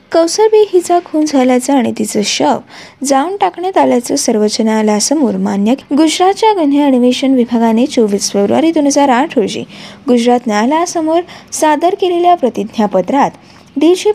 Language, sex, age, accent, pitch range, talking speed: Marathi, female, 20-39, native, 235-325 Hz, 125 wpm